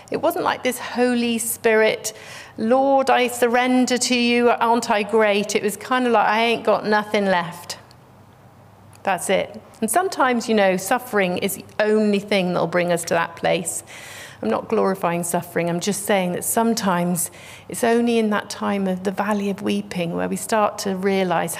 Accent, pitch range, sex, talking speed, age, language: British, 175-215 Hz, female, 185 wpm, 40-59, English